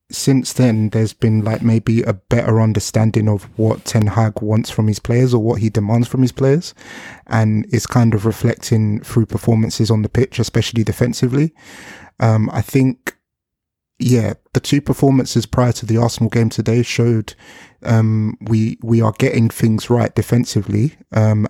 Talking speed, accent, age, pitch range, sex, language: 165 wpm, British, 20-39, 110-120 Hz, male, English